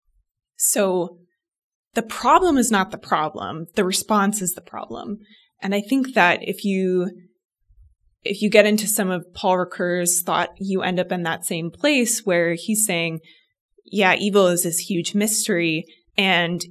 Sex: female